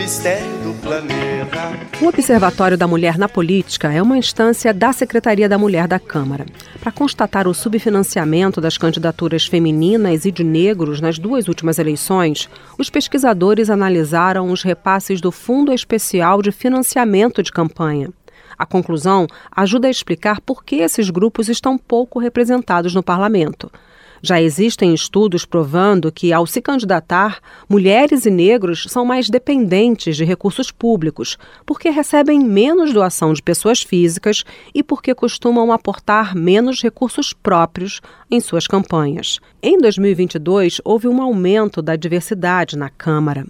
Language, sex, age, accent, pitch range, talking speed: Portuguese, female, 40-59, Brazilian, 170-235 Hz, 135 wpm